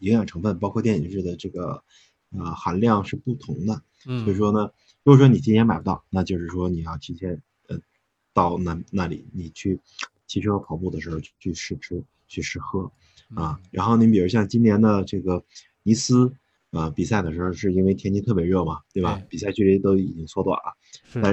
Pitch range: 90-115 Hz